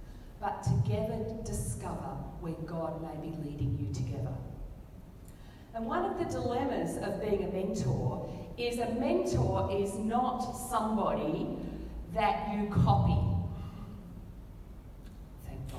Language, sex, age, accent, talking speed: English, female, 40-59, Australian, 110 wpm